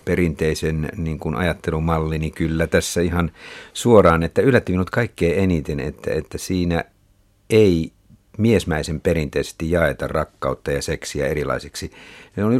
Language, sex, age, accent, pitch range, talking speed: Finnish, male, 60-79, native, 75-95 Hz, 120 wpm